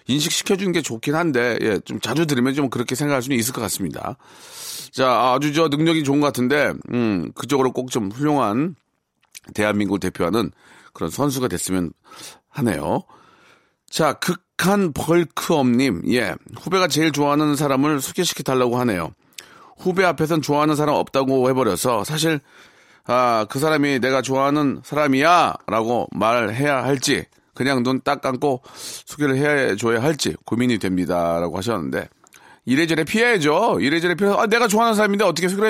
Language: Korean